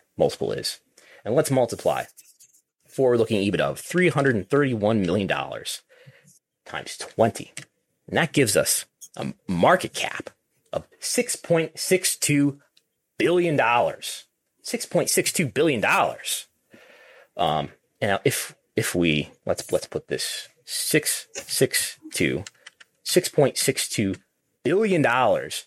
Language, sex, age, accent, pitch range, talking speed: English, male, 30-49, American, 105-155 Hz, 110 wpm